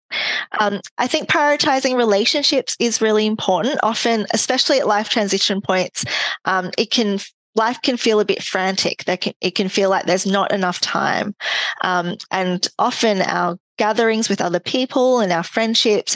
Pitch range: 185-225 Hz